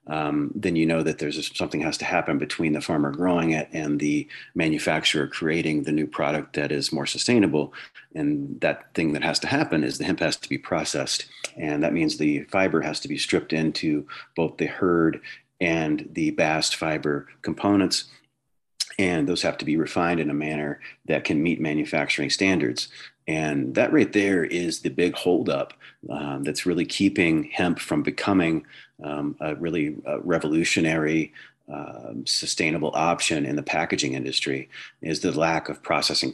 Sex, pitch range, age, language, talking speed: male, 75-85 Hz, 40-59, English, 170 wpm